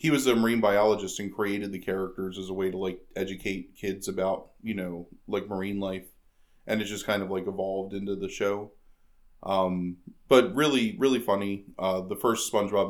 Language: English